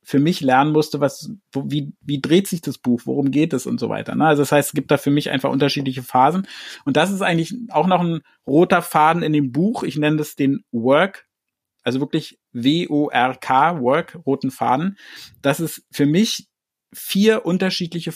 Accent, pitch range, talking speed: German, 140-175 Hz, 195 wpm